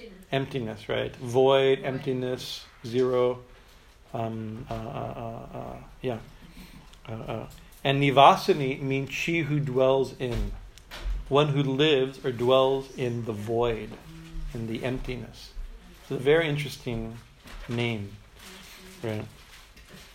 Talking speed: 110 wpm